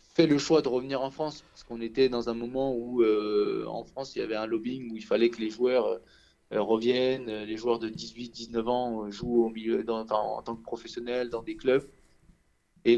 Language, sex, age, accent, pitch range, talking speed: French, male, 20-39, French, 115-160 Hz, 230 wpm